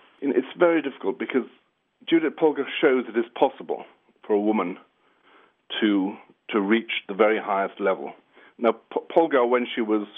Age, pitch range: 50-69, 110-135 Hz